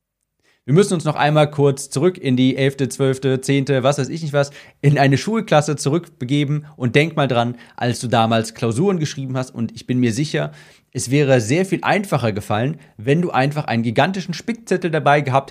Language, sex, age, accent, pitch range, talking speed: German, male, 40-59, German, 125-155 Hz, 195 wpm